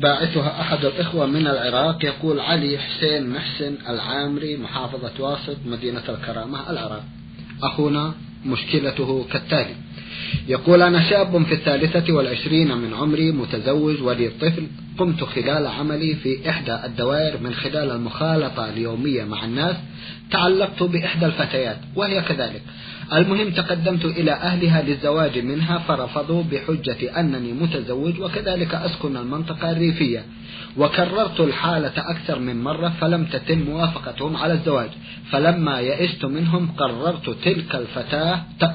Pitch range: 135-170 Hz